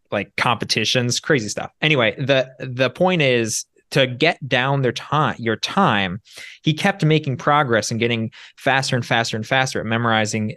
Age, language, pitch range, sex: 20-39, English, 125-155 Hz, male